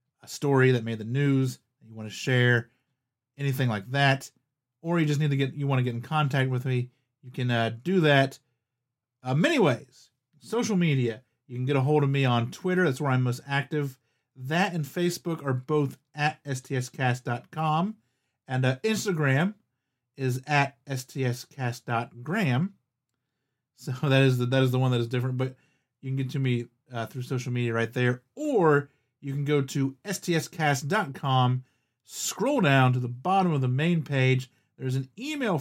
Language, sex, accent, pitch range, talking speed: English, male, American, 125-145 Hz, 175 wpm